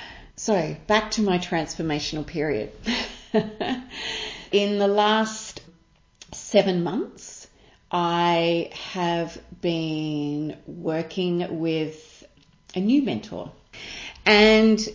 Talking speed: 80 wpm